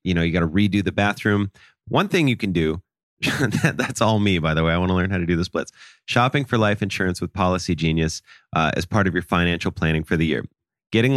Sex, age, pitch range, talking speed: male, 30-49, 95-120 Hz, 250 wpm